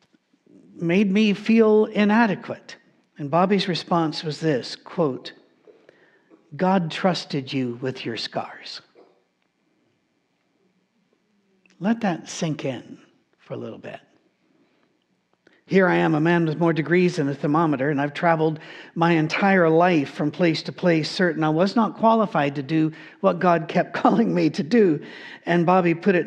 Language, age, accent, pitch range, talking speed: English, 60-79, American, 150-190 Hz, 145 wpm